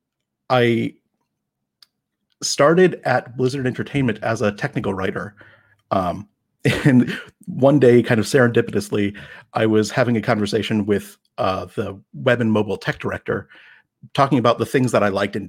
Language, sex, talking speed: English, male, 145 wpm